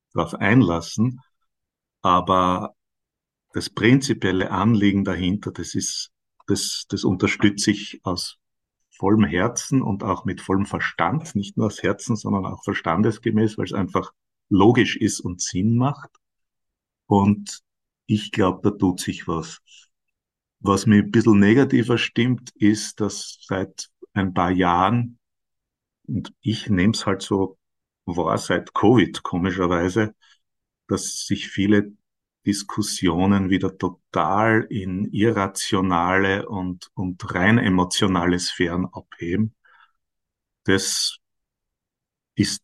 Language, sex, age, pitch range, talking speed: German, male, 50-69, 95-110 Hz, 115 wpm